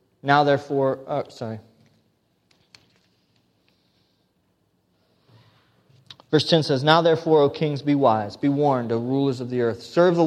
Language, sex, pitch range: English, male, 135-210 Hz